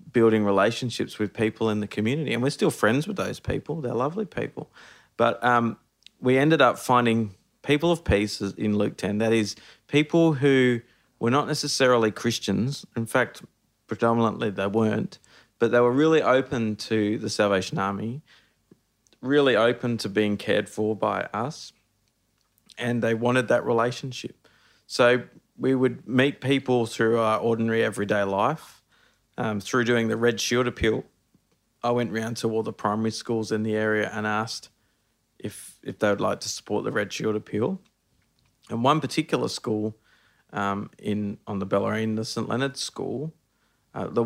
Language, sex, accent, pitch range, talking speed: English, male, Australian, 105-125 Hz, 165 wpm